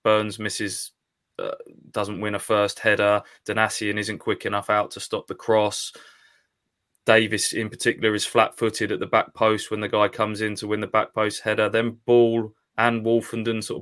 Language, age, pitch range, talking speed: English, 20-39, 105-120 Hz, 180 wpm